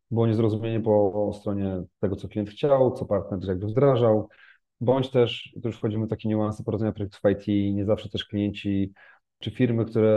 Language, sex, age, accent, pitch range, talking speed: Polish, male, 30-49, native, 105-125 Hz, 185 wpm